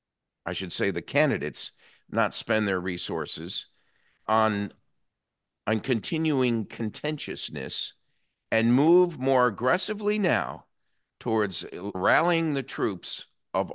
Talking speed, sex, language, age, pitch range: 100 wpm, male, English, 50-69, 110-150 Hz